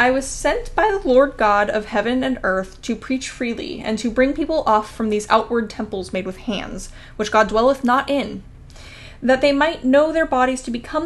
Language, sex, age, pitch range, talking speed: English, female, 10-29, 210-265 Hz, 210 wpm